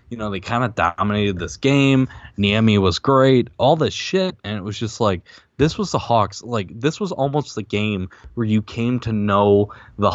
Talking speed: 205 wpm